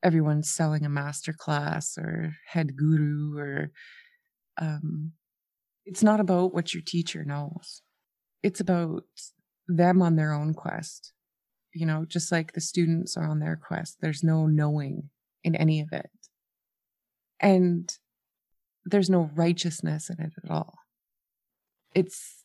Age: 20-39